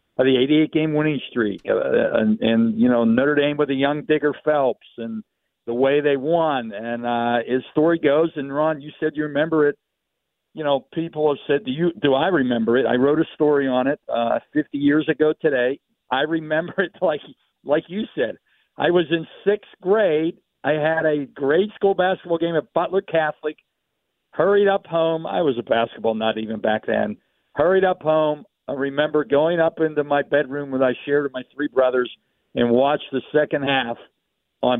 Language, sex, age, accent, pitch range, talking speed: English, male, 50-69, American, 130-170 Hz, 195 wpm